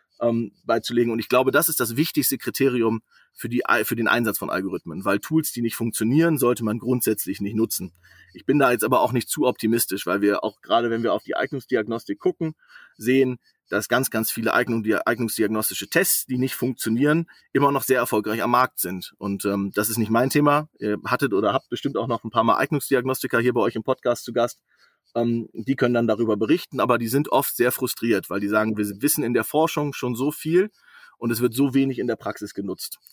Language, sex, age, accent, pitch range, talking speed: German, male, 30-49, German, 110-140 Hz, 215 wpm